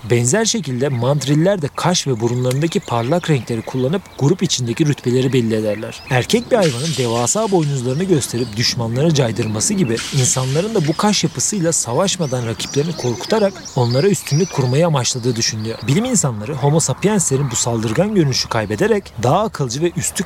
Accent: native